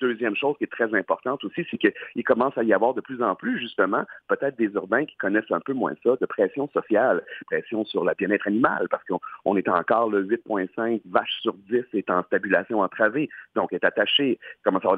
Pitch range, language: 120-155 Hz, French